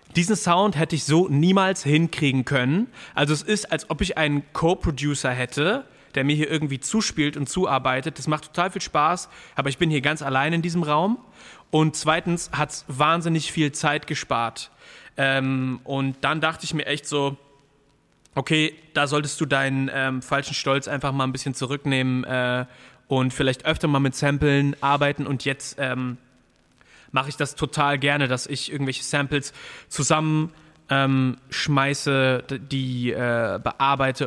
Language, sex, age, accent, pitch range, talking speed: German, male, 30-49, German, 130-155 Hz, 160 wpm